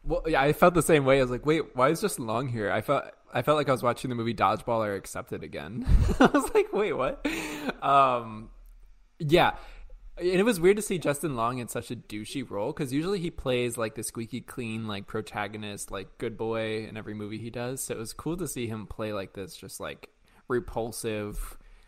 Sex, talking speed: male, 220 wpm